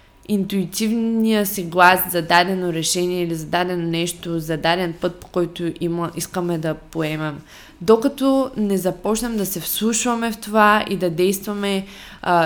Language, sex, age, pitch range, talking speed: Bulgarian, female, 20-39, 170-215 Hz, 150 wpm